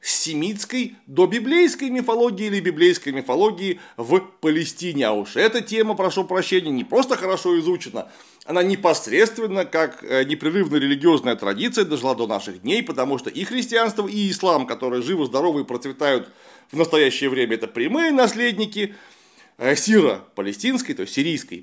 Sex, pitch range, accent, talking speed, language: male, 145-230 Hz, native, 140 wpm, Russian